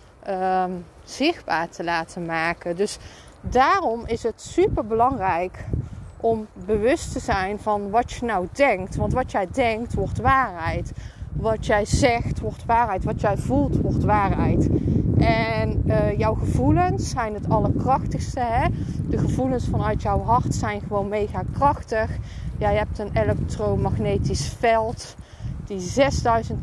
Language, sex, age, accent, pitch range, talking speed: Dutch, female, 20-39, Dutch, 200-245 Hz, 135 wpm